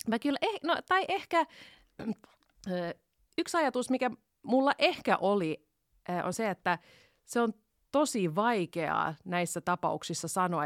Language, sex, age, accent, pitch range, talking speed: Finnish, female, 30-49, native, 160-195 Hz, 125 wpm